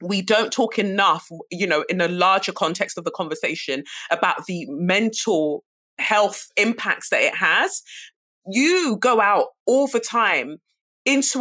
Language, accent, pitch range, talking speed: English, British, 175-235 Hz, 145 wpm